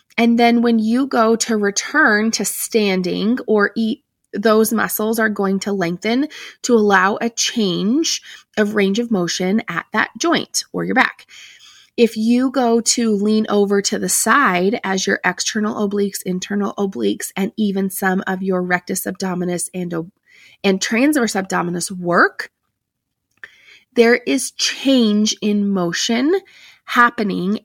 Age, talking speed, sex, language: 30-49, 135 wpm, female, English